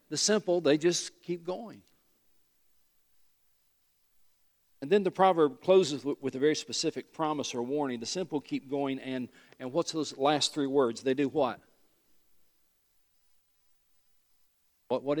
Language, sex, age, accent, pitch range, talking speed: English, male, 50-69, American, 115-155 Hz, 135 wpm